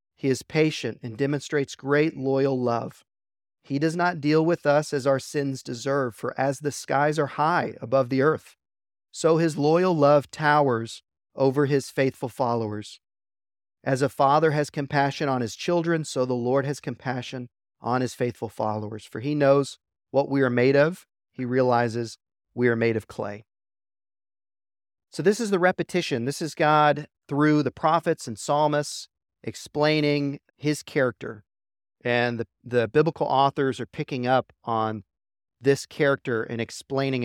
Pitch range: 115-145 Hz